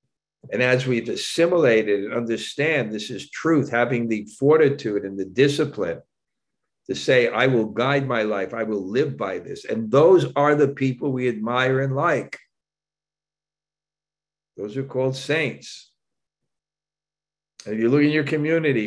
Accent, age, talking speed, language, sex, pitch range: American, 60-79, 150 wpm, English, male, 125-155 Hz